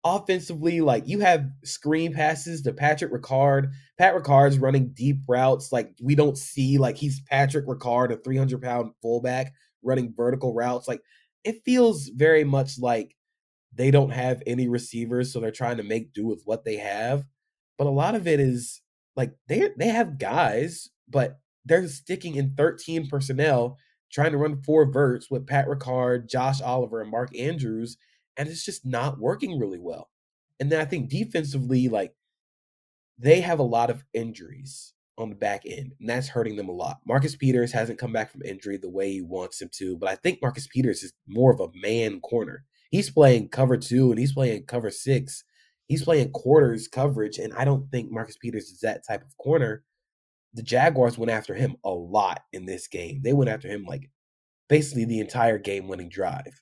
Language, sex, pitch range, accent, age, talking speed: English, male, 120-145 Hz, American, 20-39, 190 wpm